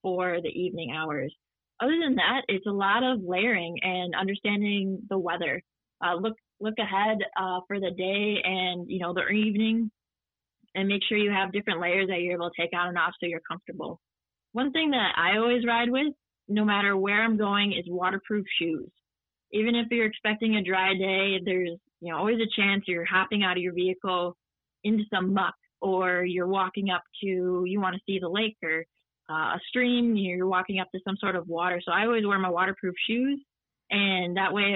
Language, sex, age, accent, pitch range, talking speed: English, female, 20-39, American, 180-210 Hz, 200 wpm